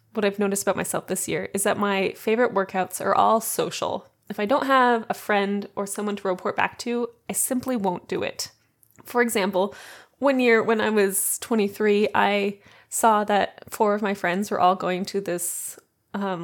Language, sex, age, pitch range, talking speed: English, female, 20-39, 195-245 Hz, 195 wpm